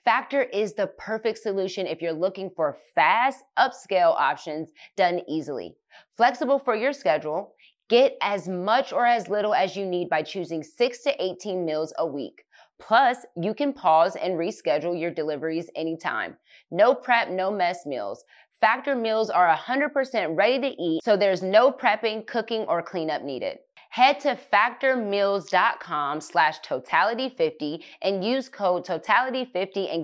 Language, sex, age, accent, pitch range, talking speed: English, female, 20-39, American, 175-240 Hz, 150 wpm